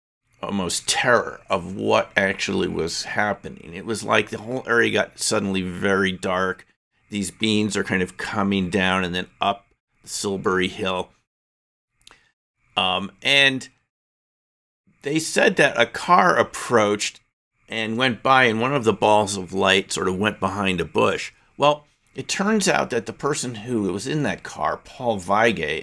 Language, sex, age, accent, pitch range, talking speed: English, male, 50-69, American, 90-115 Hz, 155 wpm